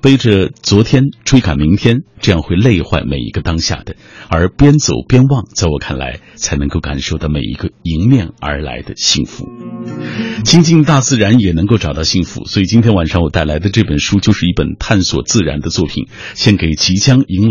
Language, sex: Chinese, male